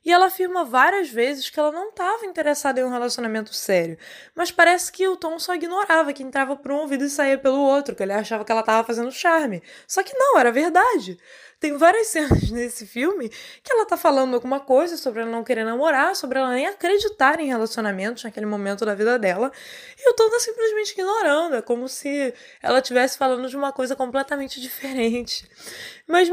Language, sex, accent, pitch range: Portuguese, female, Brazilian, 230-340 Hz